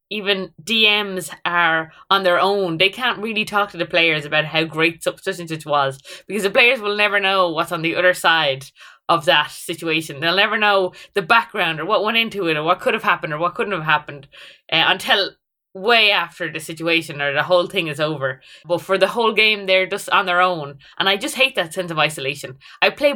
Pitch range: 165-215 Hz